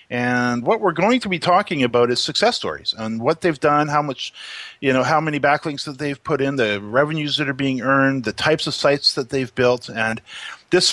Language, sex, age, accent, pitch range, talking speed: English, male, 40-59, American, 125-160 Hz, 225 wpm